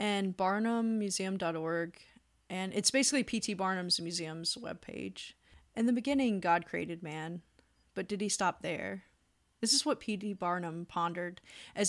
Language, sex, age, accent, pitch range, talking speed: English, female, 30-49, American, 175-210 Hz, 135 wpm